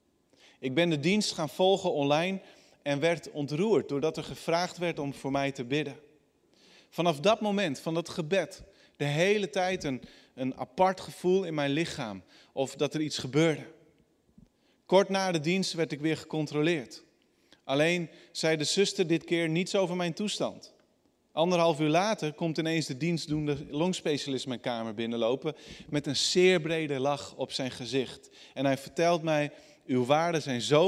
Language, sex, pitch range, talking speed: Dutch, male, 140-175 Hz, 165 wpm